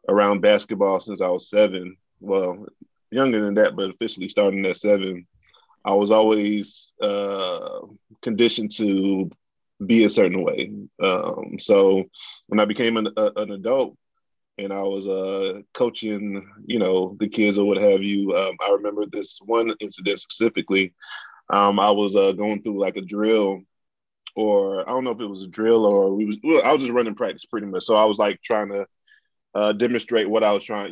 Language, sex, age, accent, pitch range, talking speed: English, male, 20-39, American, 100-110 Hz, 185 wpm